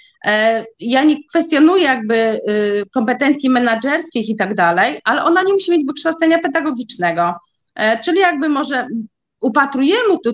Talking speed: 120 wpm